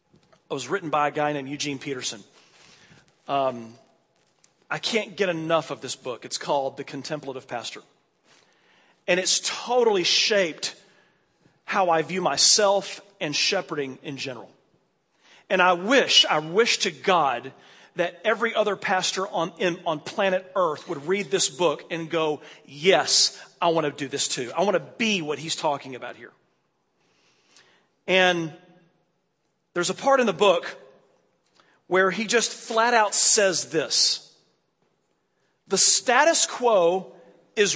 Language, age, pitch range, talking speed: English, 40-59, 155-200 Hz, 140 wpm